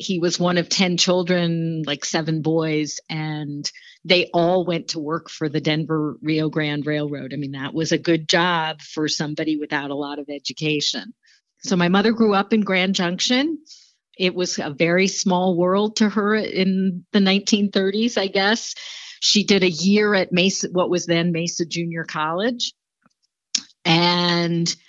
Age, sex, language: 40-59, female, English